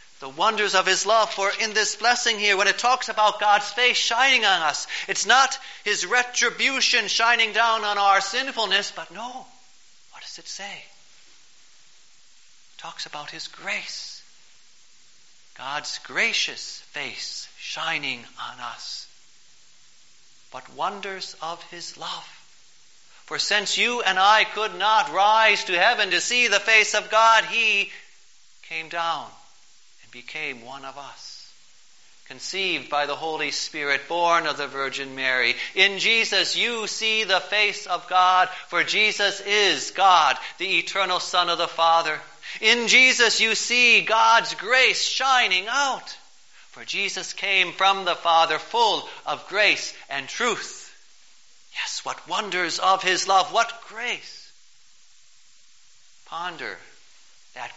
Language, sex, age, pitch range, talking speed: English, male, 40-59, 175-230 Hz, 135 wpm